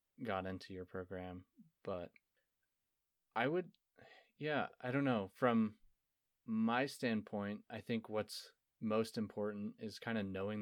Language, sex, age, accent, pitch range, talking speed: English, male, 20-39, American, 95-105 Hz, 130 wpm